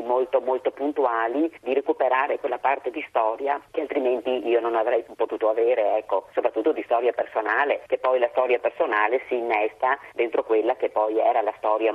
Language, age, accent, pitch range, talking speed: Italian, 30-49, native, 110-130 Hz, 175 wpm